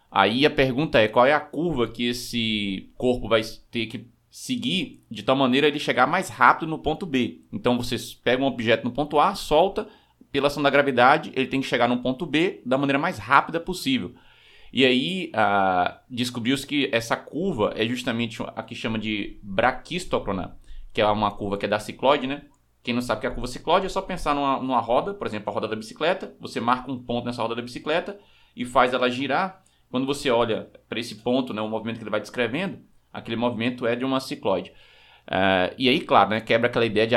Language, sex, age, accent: Portuguese, male, 20-39, Brazilian